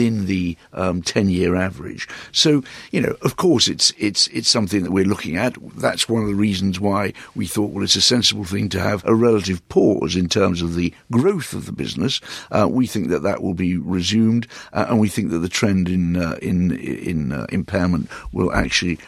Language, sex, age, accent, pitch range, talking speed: English, male, 60-79, British, 90-110 Hz, 210 wpm